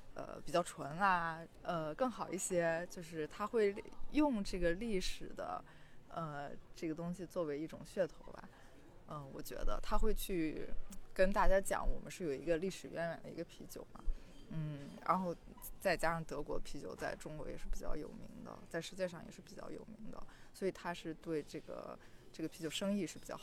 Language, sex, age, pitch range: Chinese, female, 20-39, 160-195 Hz